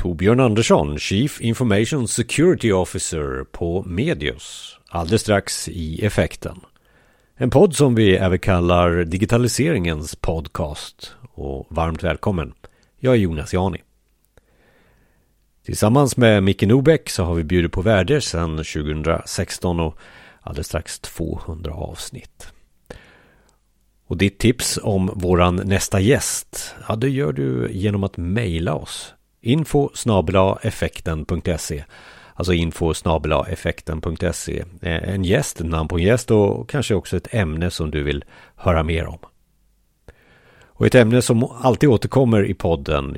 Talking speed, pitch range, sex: 120 wpm, 85-110 Hz, male